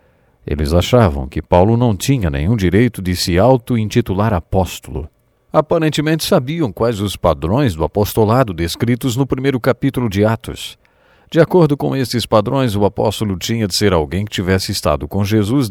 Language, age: English, 50-69